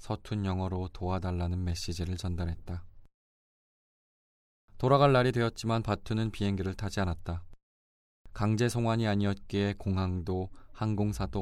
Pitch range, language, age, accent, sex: 90-105 Hz, Korean, 20-39, native, male